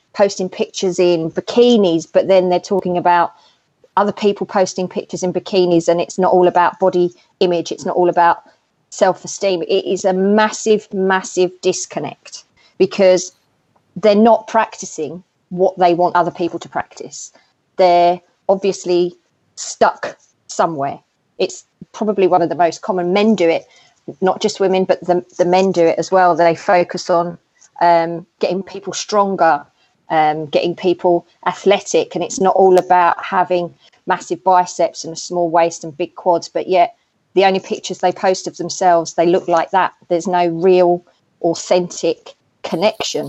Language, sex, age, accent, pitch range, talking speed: English, female, 30-49, British, 175-195 Hz, 155 wpm